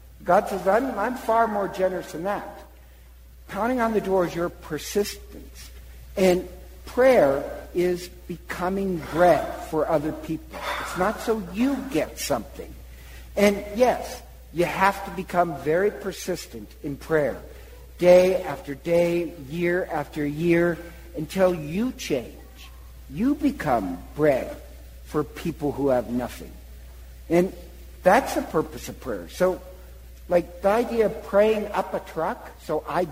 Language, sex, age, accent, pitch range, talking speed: English, male, 60-79, American, 125-205 Hz, 135 wpm